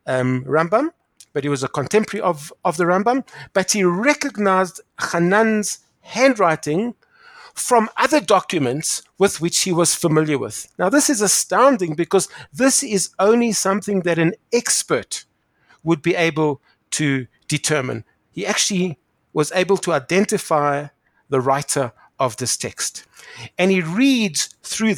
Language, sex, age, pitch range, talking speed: English, male, 50-69, 145-200 Hz, 135 wpm